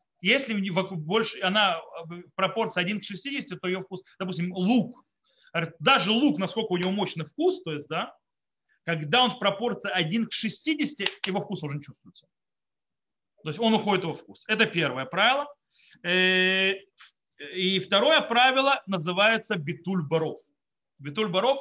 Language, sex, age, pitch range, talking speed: Russian, male, 30-49, 175-230 Hz, 145 wpm